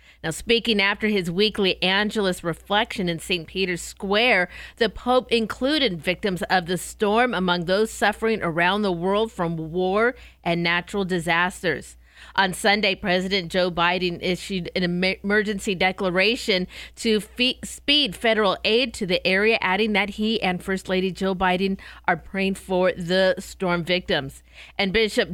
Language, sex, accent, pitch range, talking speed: English, female, American, 180-215 Hz, 145 wpm